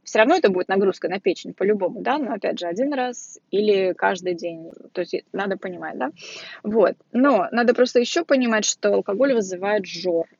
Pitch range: 185-225 Hz